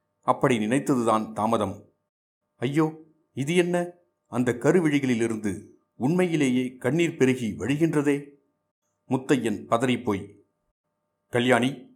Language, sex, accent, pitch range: Tamil, male, native, 105-130 Hz